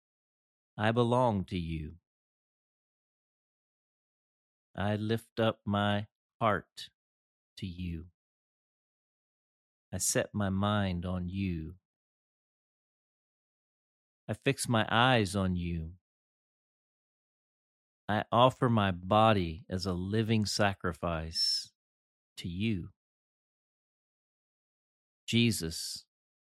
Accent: American